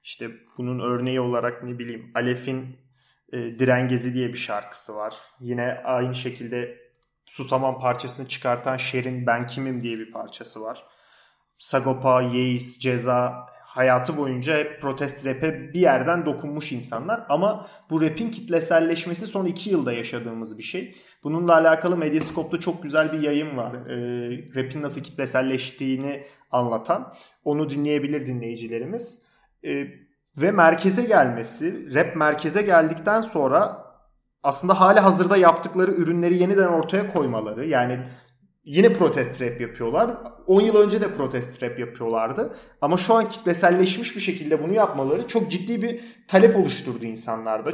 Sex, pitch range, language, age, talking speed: male, 125-180 Hz, Turkish, 30-49, 130 wpm